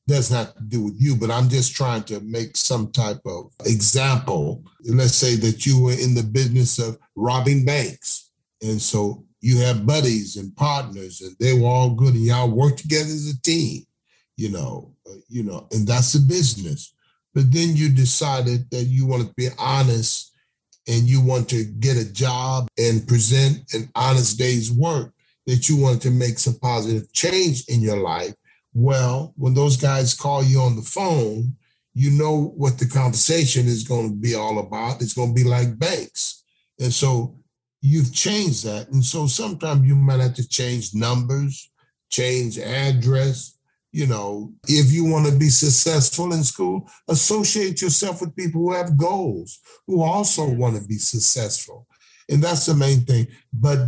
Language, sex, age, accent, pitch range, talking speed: English, male, 40-59, American, 120-145 Hz, 180 wpm